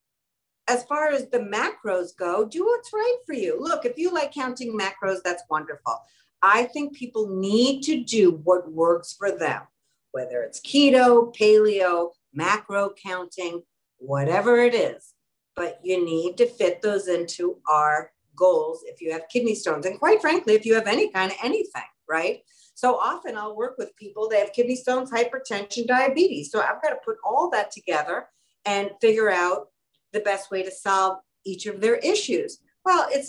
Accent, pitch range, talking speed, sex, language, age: American, 185-270 Hz, 175 wpm, female, English, 50-69